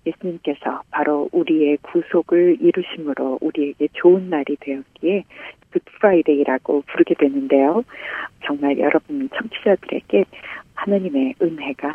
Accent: native